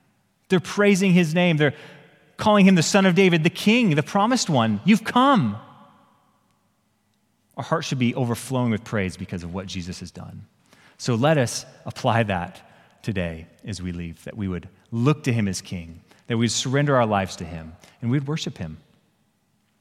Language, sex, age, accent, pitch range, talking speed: English, male, 30-49, American, 100-140 Hz, 180 wpm